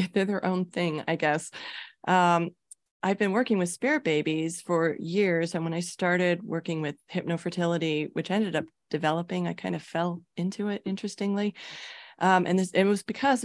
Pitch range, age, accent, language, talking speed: 160-200 Hz, 30-49, American, English, 170 wpm